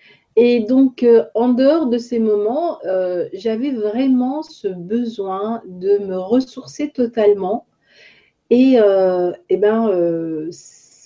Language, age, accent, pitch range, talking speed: French, 40-59, French, 185-245 Hz, 120 wpm